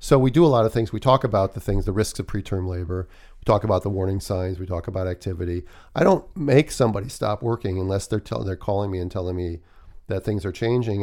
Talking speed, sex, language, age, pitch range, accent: 250 wpm, male, English, 40-59, 95-115 Hz, American